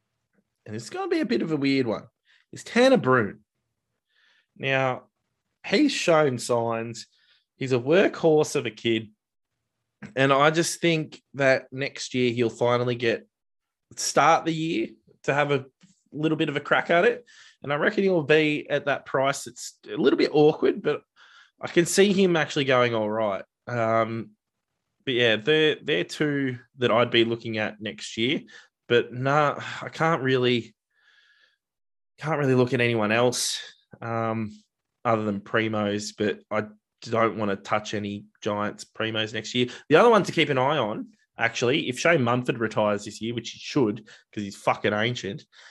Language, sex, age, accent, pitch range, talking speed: English, male, 20-39, Australian, 105-145 Hz, 170 wpm